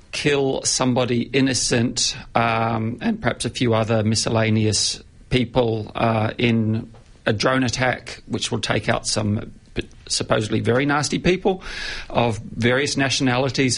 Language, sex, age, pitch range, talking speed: English, male, 40-59, 115-130 Hz, 120 wpm